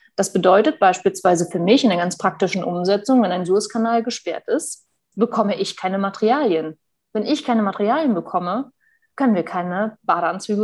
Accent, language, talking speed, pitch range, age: German, German, 160 wpm, 195-240 Hz, 30-49